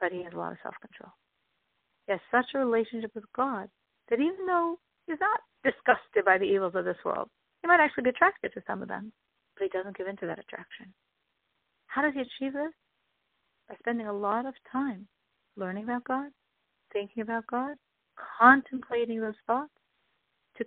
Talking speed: 185 wpm